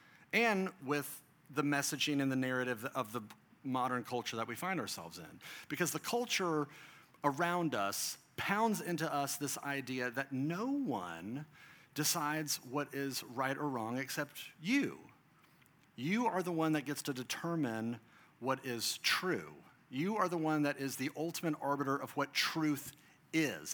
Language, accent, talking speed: English, American, 155 wpm